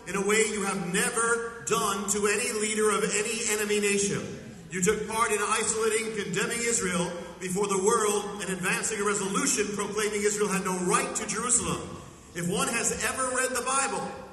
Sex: male